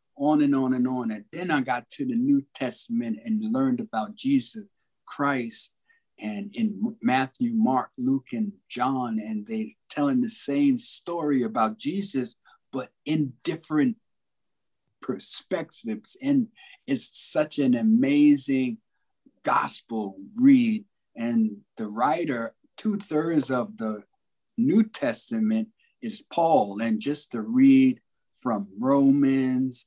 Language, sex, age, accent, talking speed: English, male, 50-69, American, 125 wpm